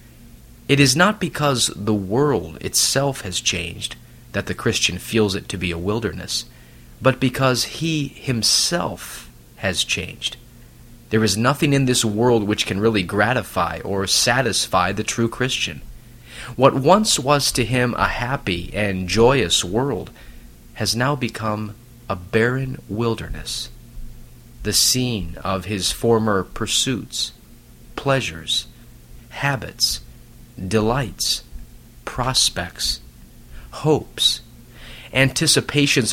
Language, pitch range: English, 100-130 Hz